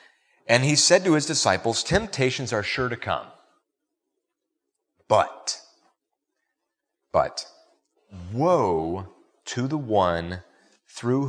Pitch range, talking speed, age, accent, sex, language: 95-145 Hz, 95 wpm, 30-49, American, male, English